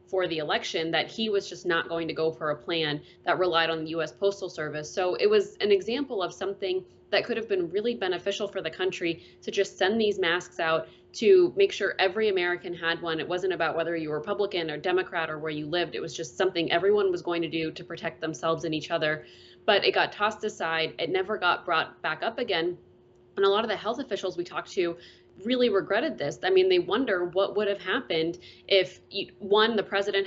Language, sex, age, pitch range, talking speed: English, female, 20-39, 165-205 Hz, 230 wpm